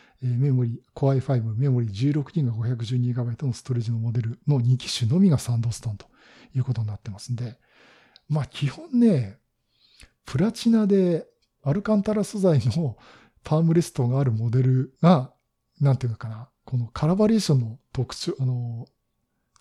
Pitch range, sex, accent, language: 120-160 Hz, male, native, Japanese